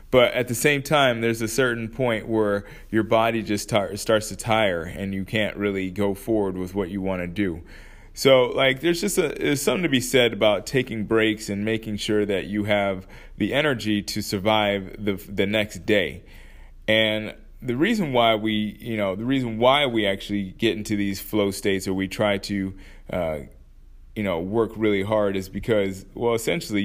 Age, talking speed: 20-39, 195 wpm